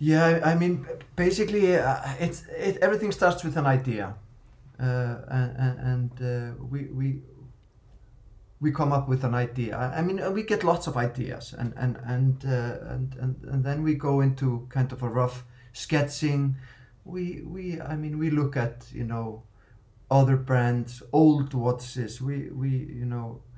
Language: English